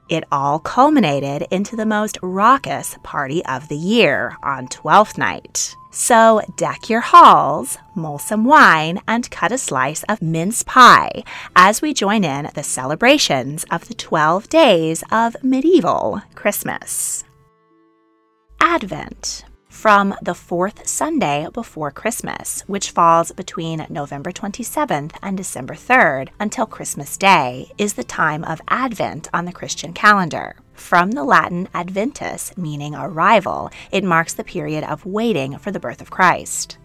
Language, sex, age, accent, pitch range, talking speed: English, female, 30-49, American, 150-220 Hz, 140 wpm